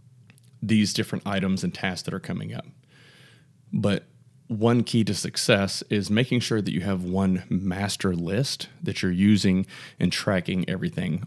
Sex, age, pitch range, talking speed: male, 30-49, 95-125 Hz, 155 wpm